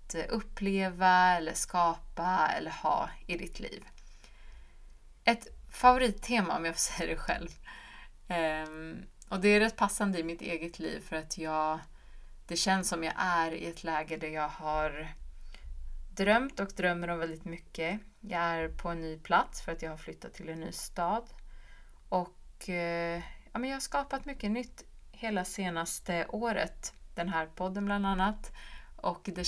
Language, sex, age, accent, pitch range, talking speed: Swedish, female, 30-49, native, 160-200 Hz, 155 wpm